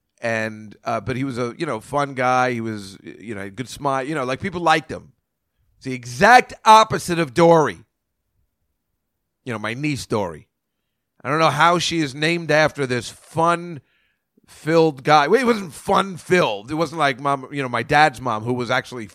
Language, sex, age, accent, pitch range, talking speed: English, male, 40-59, American, 125-170 Hz, 195 wpm